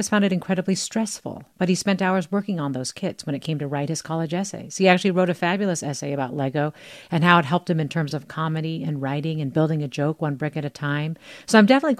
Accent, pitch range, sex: American, 160-220 Hz, female